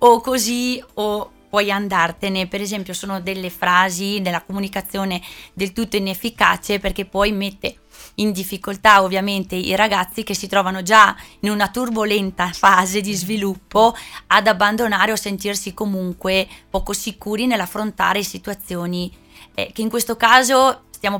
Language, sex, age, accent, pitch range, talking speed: Italian, female, 20-39, native, 185-210 Hz, 135 wpm